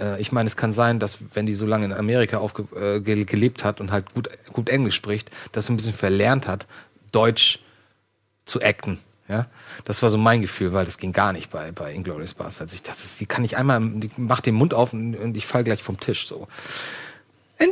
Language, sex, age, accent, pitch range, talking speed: German, male, 40-59, German, 115-145 Hz, 230 wpm